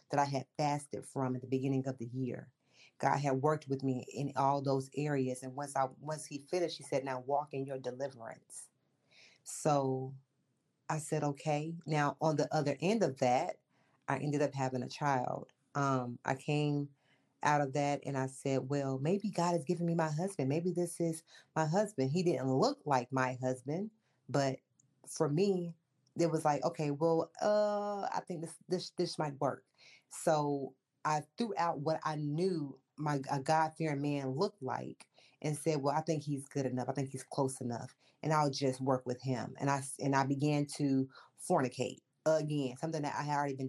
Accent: American